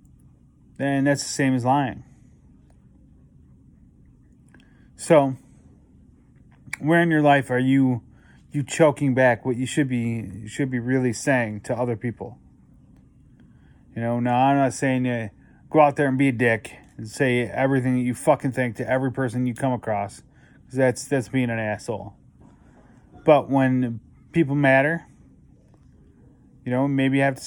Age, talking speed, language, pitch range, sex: 30-49, 155 wpm, English, 120-140 Hz, male